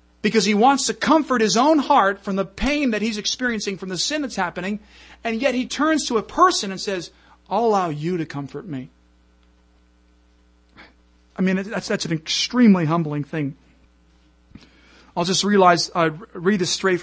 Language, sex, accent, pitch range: English, male, American, 170-225 Hz